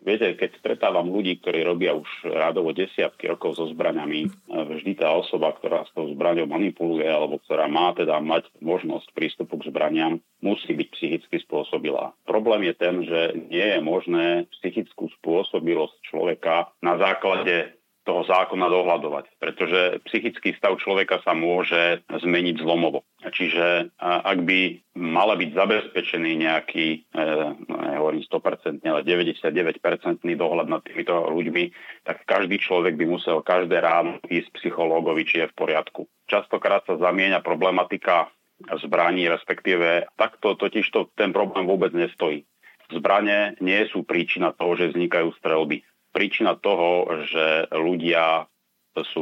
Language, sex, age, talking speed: Slovak, male, 40-59, 135 wpm